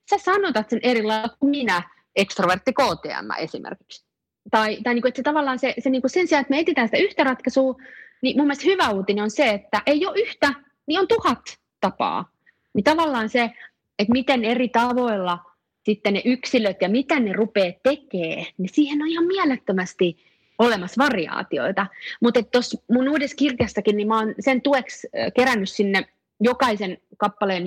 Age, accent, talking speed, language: 30-49, native, 165 wpm, Finnish